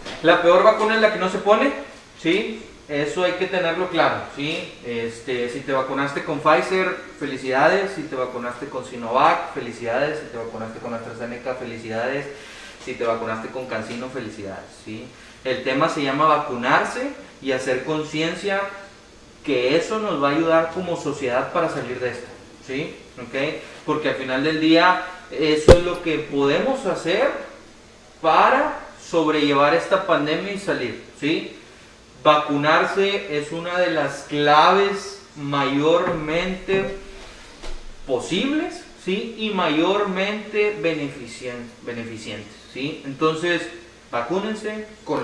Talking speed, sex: 130 wpm, male